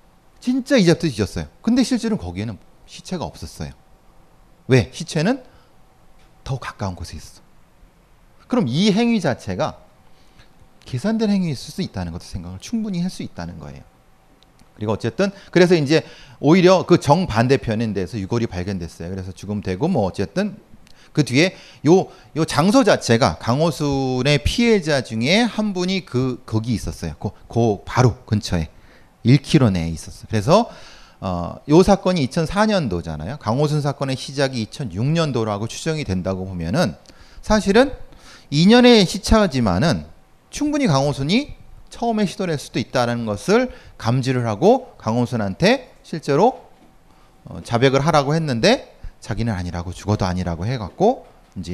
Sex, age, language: male, 30-49, Korean